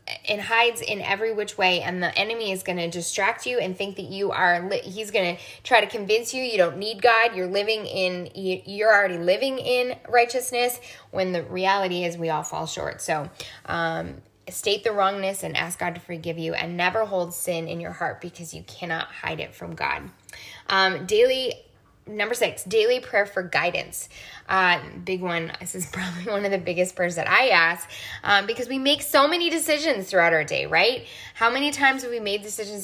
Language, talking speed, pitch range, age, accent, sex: English, 205 wpm, 175-220 Hz, 10-29, American, female